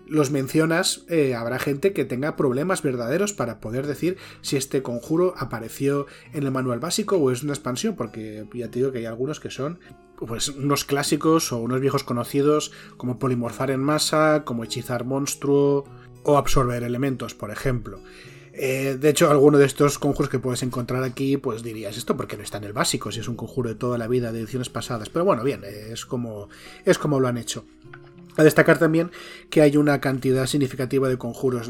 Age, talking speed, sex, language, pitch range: 30-49, 195 wpm, male, Spanish, 120-150 Hz